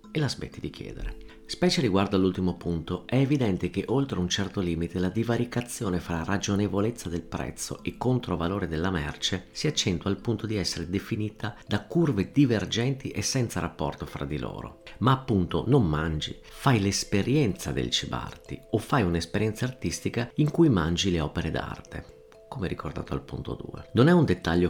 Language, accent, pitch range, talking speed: Italian, native, 85-115 Hz, 165 wpm